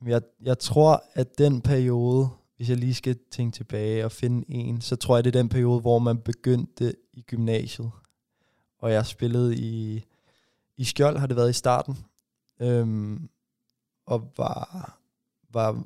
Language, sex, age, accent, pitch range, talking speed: Danish, male, 20-39, native, 110-125 Hz, 165 wpm